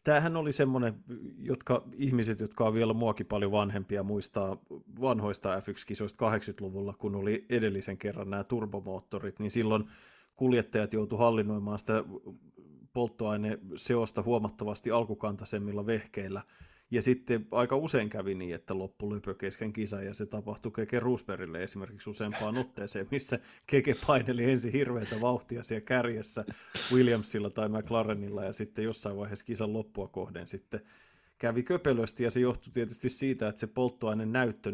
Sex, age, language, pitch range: male, 30-49, Finnish, 105-125 Hz